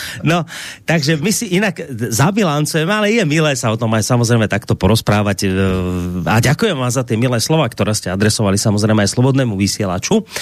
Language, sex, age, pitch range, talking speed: Slovak, male, 30-49, 115-155 Hz, 175 wpm